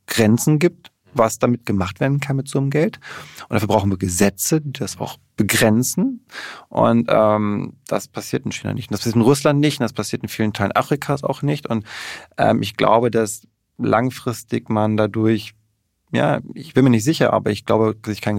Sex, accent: male, German